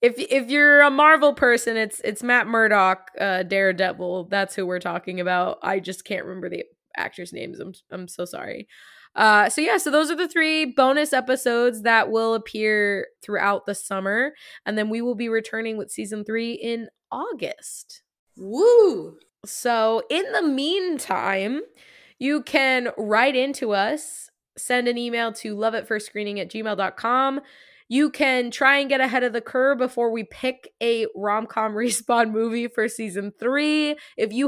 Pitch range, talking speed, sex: 200-255 Hz, 165 wpm, female